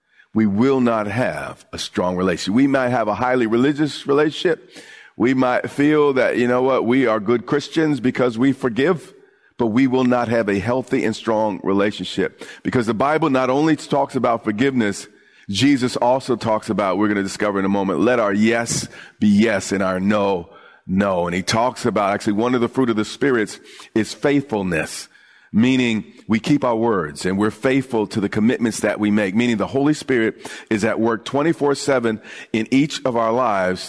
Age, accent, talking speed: 50-69, American, 190 wpm